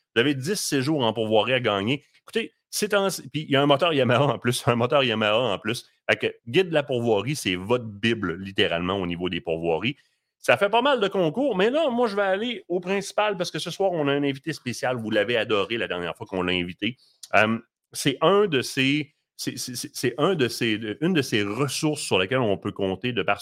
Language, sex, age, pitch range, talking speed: French, male, 30-49, 115-170 Hz, 200 wpm